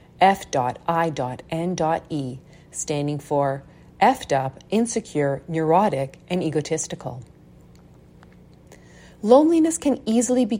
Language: English